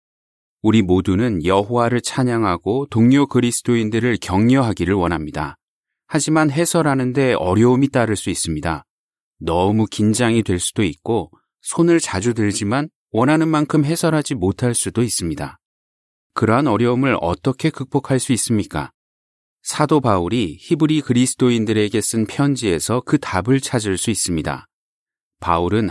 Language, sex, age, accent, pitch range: Korean, male, 30-49, native, 95-135 Hz